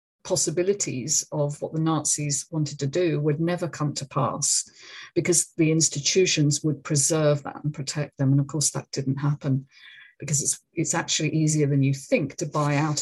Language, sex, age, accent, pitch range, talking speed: English, female, 50-69, British, 140-165 Hz, 180 wpm